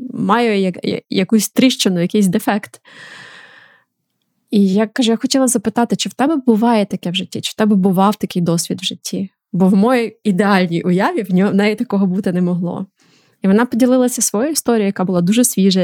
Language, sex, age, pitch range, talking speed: Ukrainian, female, 20-39, 185-225 Hz, 175 wpm